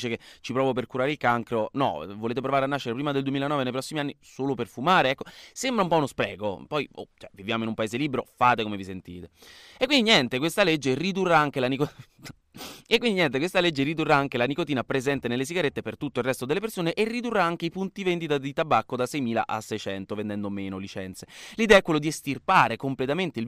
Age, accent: 20-39, native